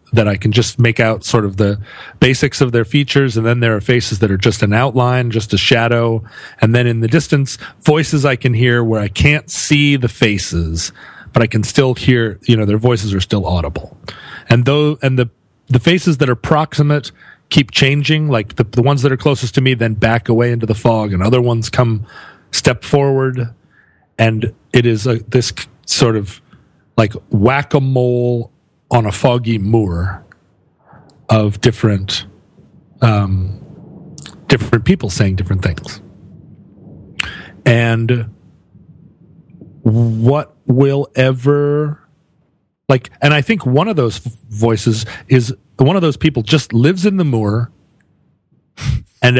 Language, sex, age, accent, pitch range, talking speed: English, male, 40-59, American, 110-140 Hz, 155 wpm